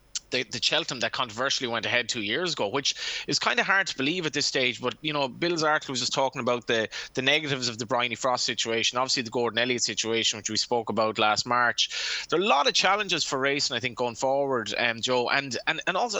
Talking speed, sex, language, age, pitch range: 250 wpm, male, English, 20-39, 120-150 Hz